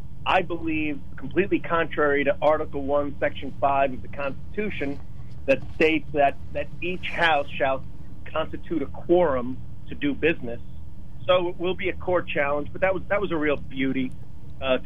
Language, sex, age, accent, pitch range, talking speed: English, male, 40-59, American, 135-170 Hz, 165 wpm